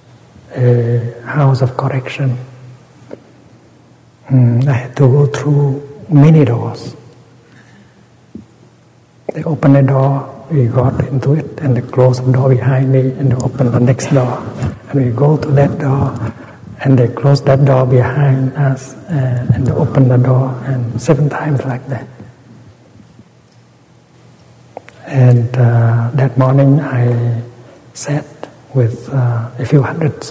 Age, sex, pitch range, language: 60-79, male, 125-140 Hz, English